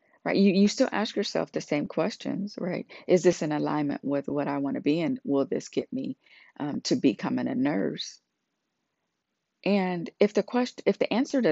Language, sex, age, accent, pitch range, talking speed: English, female, 40-59, American, 150-220 Hz, 200 wpm